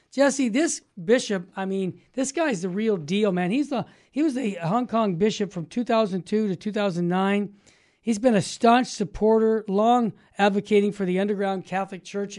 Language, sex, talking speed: English, male, 190 wpm